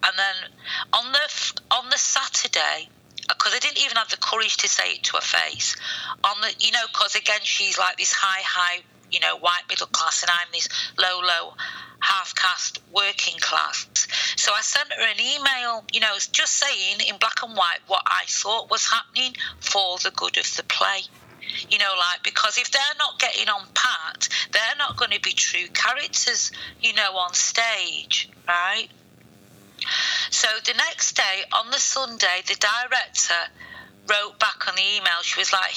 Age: 40-59